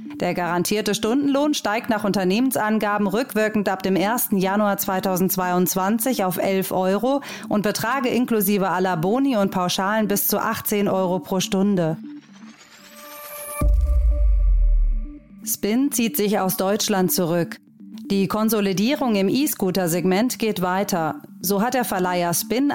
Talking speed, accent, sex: 120 wpm, German, female